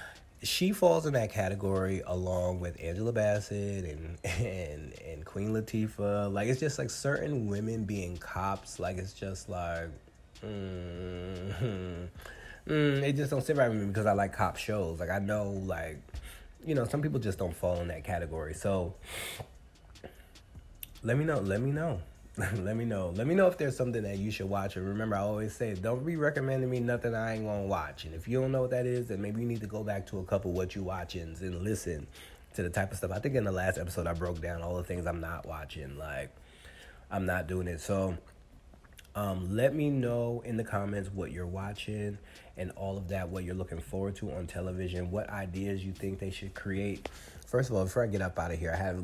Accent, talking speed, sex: American, 220 wpm, male